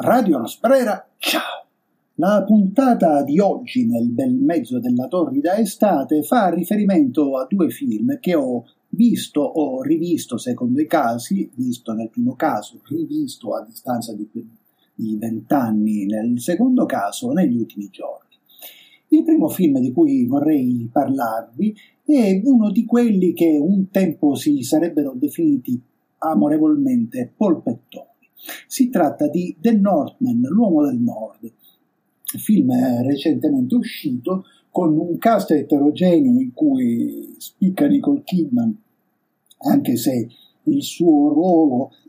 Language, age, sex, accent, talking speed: Italian, 50-69, male, native, 125 wpm